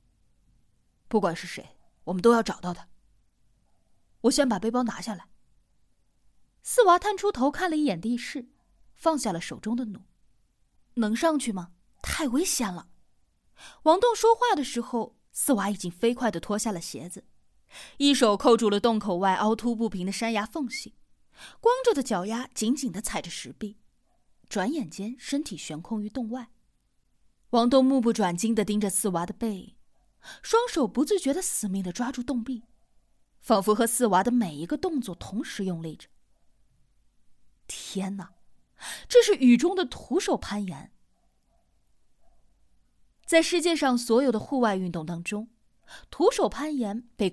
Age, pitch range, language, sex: 20-39, 200-280 Hz, Chinese, female